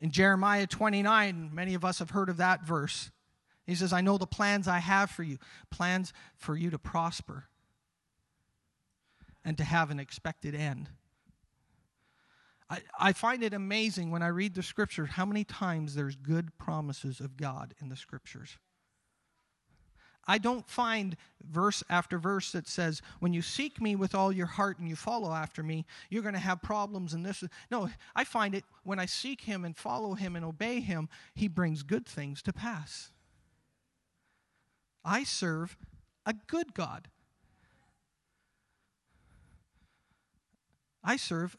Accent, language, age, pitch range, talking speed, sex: American, English, 40-59, 160-210 Hz, 155 wpm, male